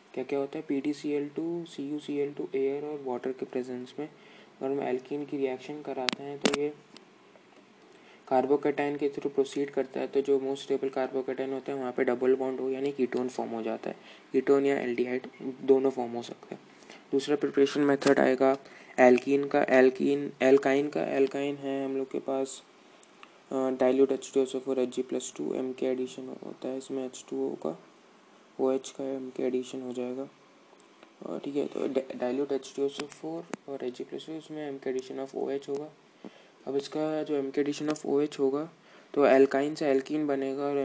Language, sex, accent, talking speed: Hindi, male, native, 175 wpm